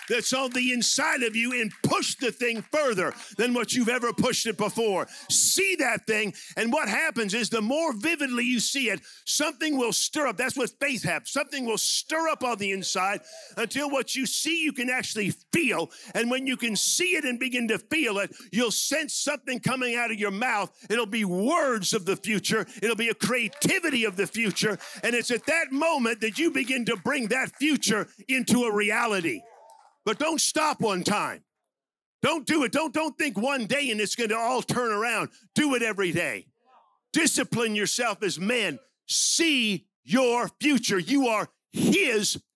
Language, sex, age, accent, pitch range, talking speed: English, male, 50-69, American, 210-270 Hz, 190 wpm